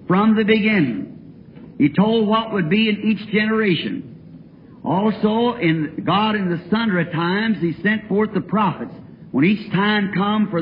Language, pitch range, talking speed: English, 185-225 Hz, 160 wpm